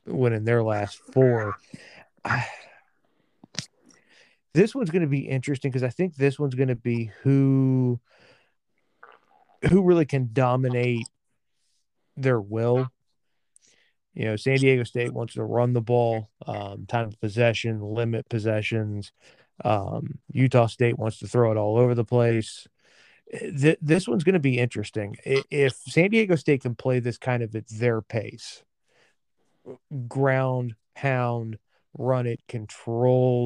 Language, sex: English, male